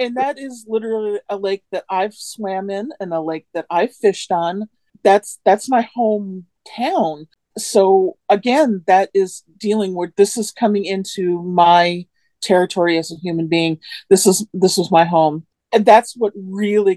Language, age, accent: English, 40-59, American